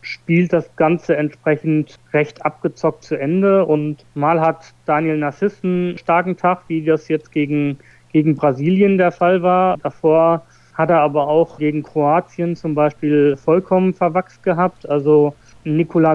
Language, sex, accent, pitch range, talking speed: German, male, German, 150-175 Hz, 145 wpm